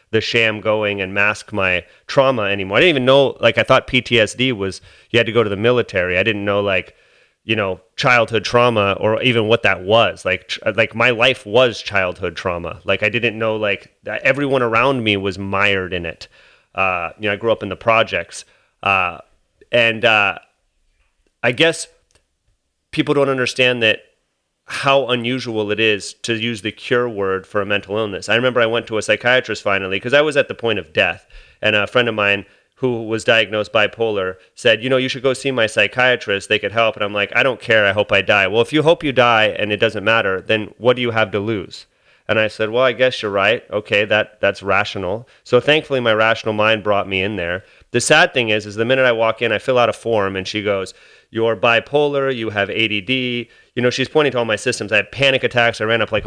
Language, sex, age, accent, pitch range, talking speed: English, male, 30-49, American, 105-125 Hz, 225 wpm